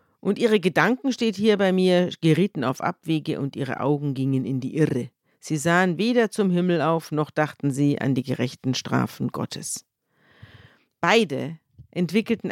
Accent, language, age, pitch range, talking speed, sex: German, German, 50-69, 140-190 Hz, 160 wpm, female